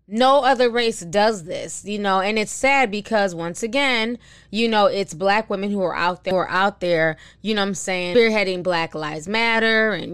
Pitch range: 170-215 Hz